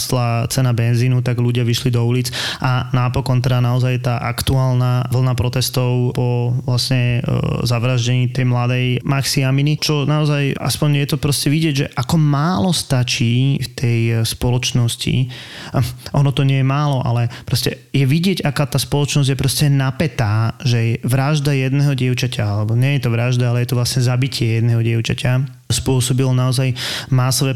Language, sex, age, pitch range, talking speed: Slovak, male, 20-39, 125-135 Hz, 150 wpm